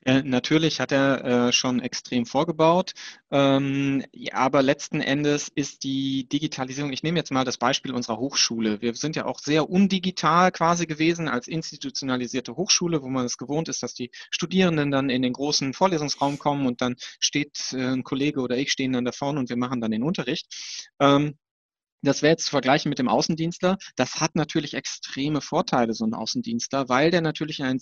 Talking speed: 175 wpm